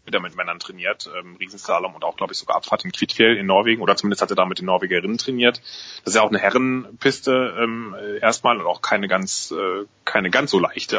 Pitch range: 95-115 Hz